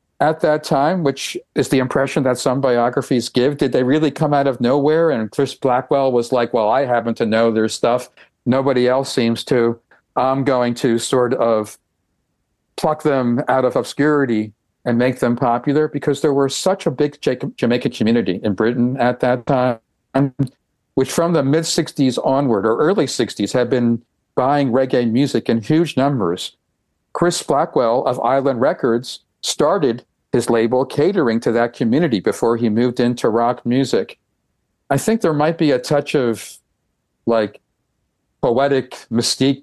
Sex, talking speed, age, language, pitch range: male, 160 wpm, 50-69, English, 115-140 Hz